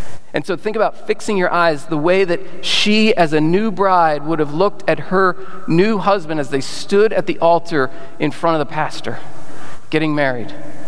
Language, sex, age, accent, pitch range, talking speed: English, male, 40-59, American, 150-190 Hz, 195 wpm